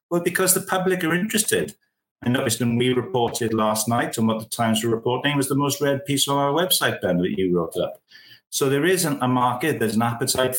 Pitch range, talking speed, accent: 105-130 Hz, 225 wpm, British